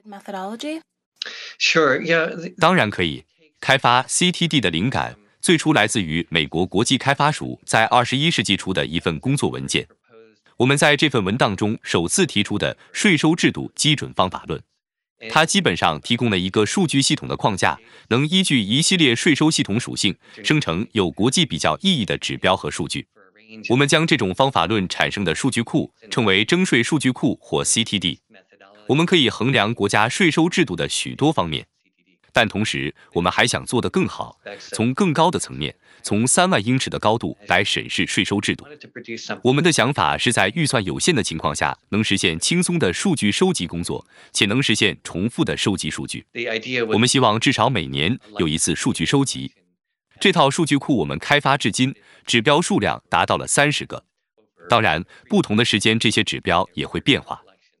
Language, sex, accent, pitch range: English, male, Chinese, 105-155 Hz